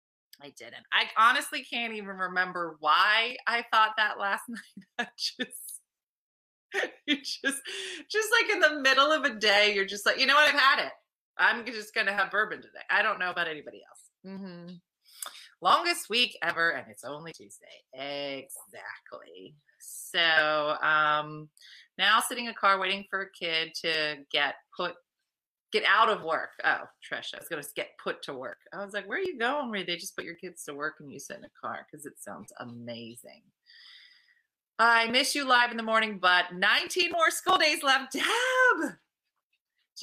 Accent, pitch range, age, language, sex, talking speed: American, 175-265 Hz, 30-49, English, female, 185 wpm